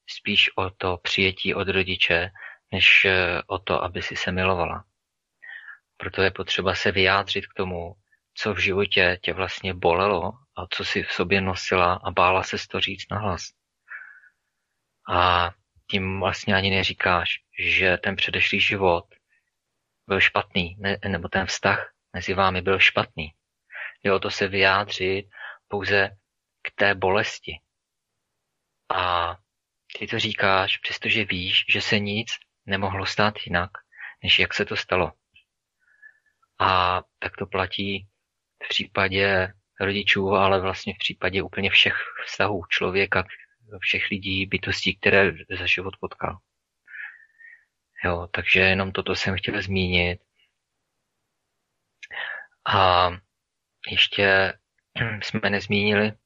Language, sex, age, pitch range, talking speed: Czech, male, 30-49, 95-100 Hz, 125 wpm